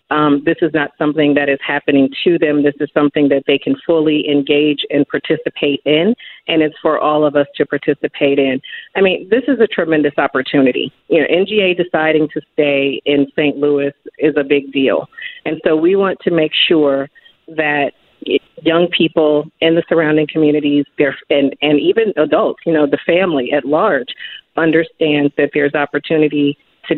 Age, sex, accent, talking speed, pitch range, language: 40-59, female, American, 175 wpm, 145-170 Hz, English